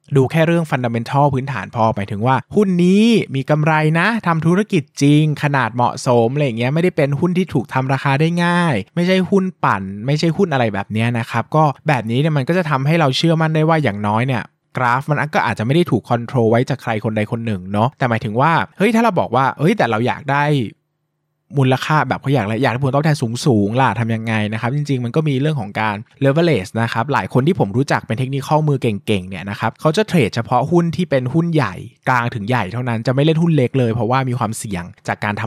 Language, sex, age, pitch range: Thai, male, 20-39, 115-155 Hz